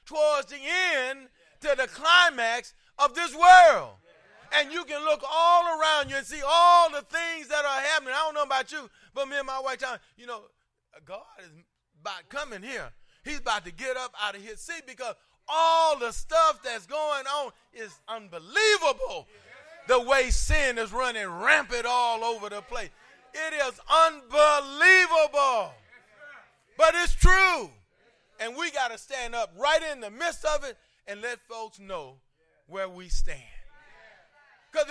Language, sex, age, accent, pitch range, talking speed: English, male, 30-49, American, 230-310 Hz, 165 wpm